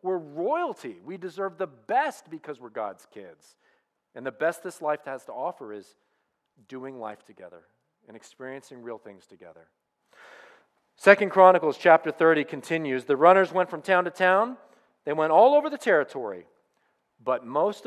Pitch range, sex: 130-190 Hz, male